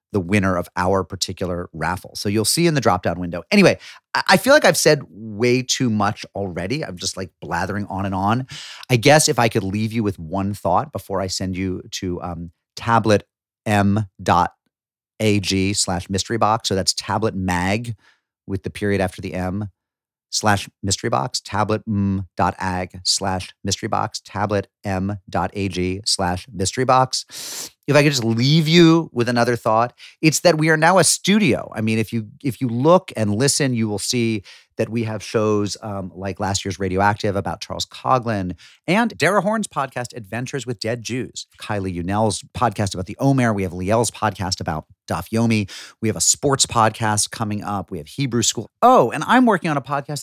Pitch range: 95-125 Hz